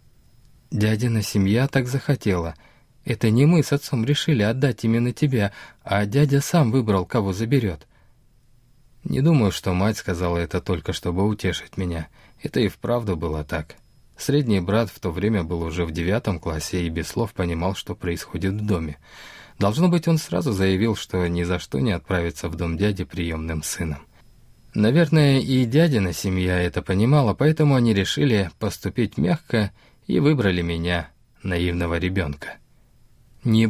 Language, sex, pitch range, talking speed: Russian, male, 90-130 Hz, 150 wpm